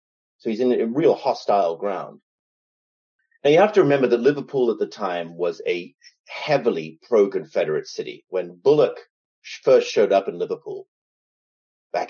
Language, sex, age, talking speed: English, male, 30-49, 150 wpm